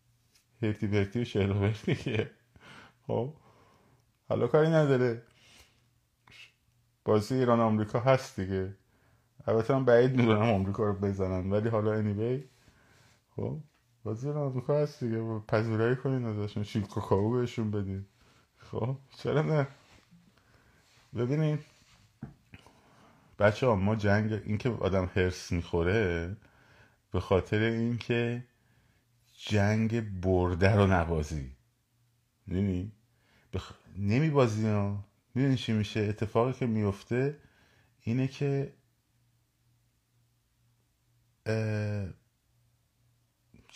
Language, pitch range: Persian, 100-120 Hz